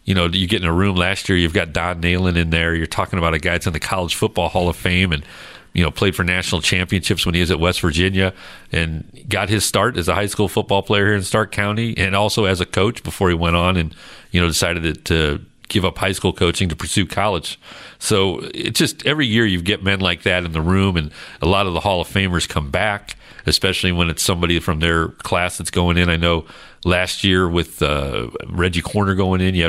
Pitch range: 85-100 Hz